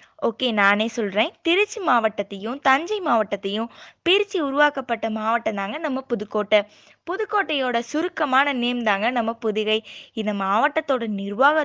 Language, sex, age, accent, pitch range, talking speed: Tamil, female, 20-39, native, 220-300 Hz, 115 wpm